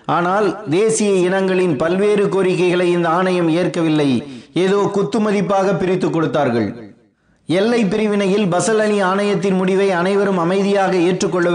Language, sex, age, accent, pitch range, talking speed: Tamil, male, 30-49, native, 170-200 Hz, 110 wpm